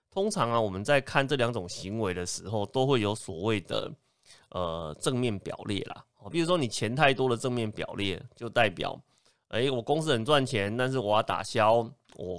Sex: male